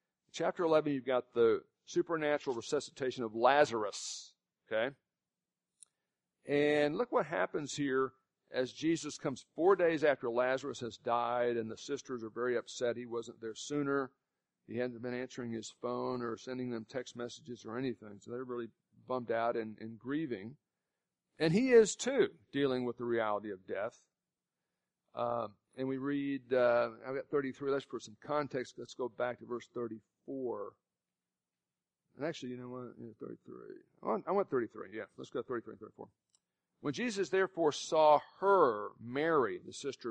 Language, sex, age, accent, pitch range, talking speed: English, male, 50-69, American, 115-145 Hz, 160 wpm